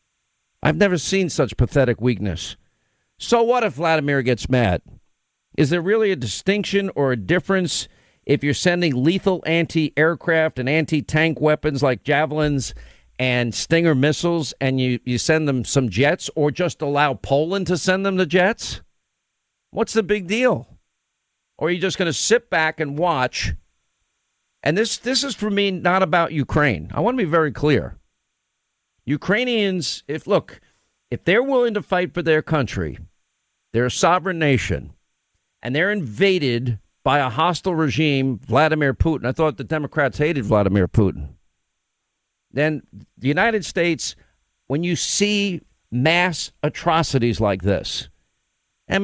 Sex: male